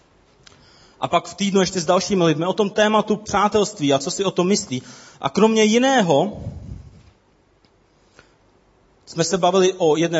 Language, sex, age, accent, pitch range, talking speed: Czech, male, 30-49, native, 135-170 Hz, 155 wpm